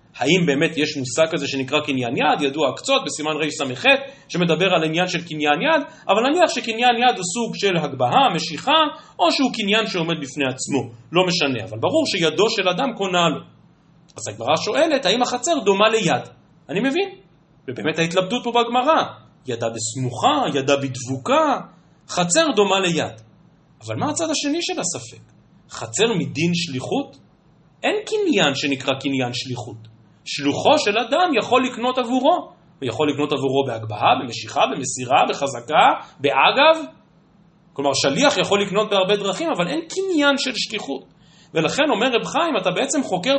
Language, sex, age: Hebrew, male, 40-59